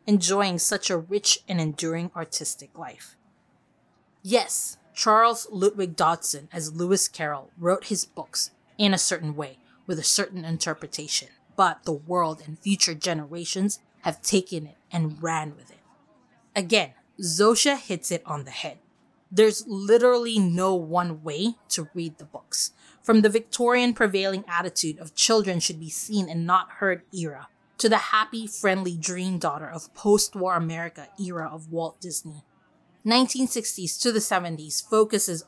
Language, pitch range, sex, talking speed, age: English, 165-210 Hz, female, 145 wpm, 20-39